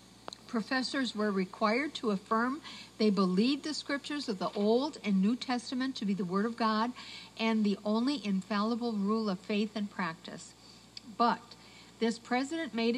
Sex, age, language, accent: female, 60-79, English, American